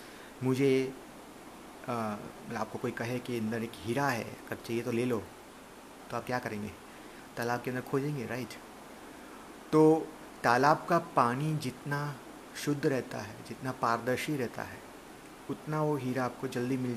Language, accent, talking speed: Hindi, native, 150 wpm